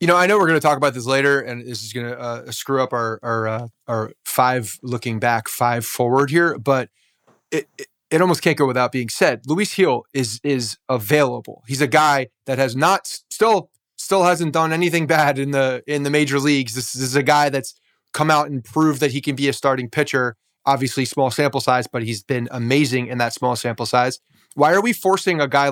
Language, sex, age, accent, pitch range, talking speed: English, male, 30-49, American, 125-160 Hz, 230 wpm